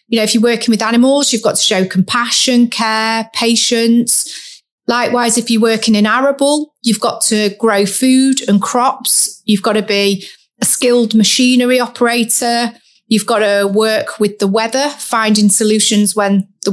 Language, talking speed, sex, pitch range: English, 165 wpm, female, 200-240 Hz